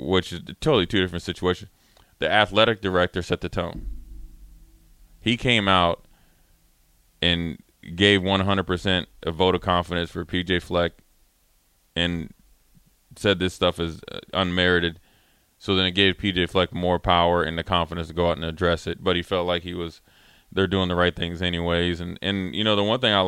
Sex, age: male, 20-39